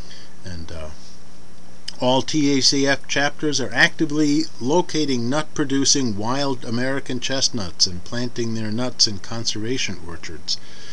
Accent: American